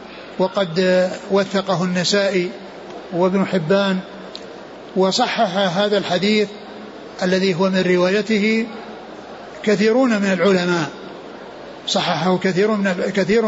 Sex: male